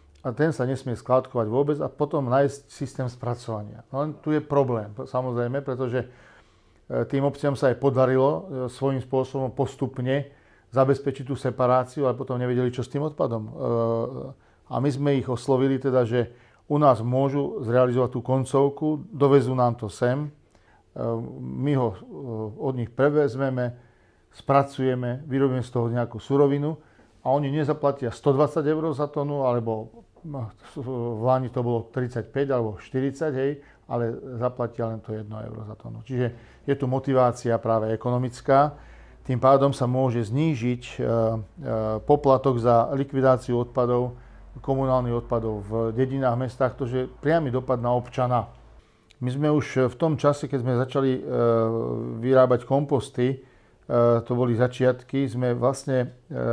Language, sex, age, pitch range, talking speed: Slovak, male, 40-59, 120-135 Hz, 140 wpm